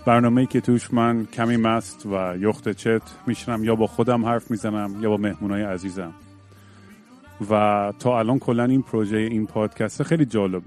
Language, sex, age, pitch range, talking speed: Persian, male, 30-49, 100-115 Hz, 165 wpm